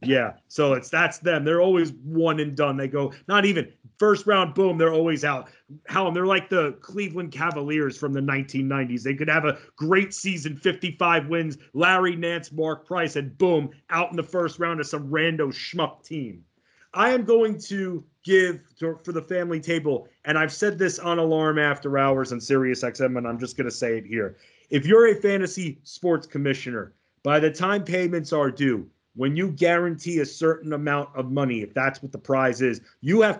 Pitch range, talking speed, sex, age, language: 140-170 Hz, 200 wpm, male, 30-49, English